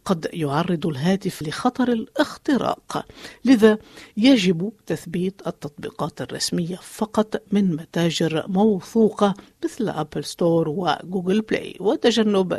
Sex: female